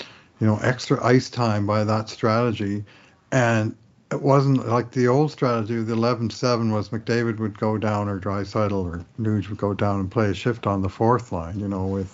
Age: 60-79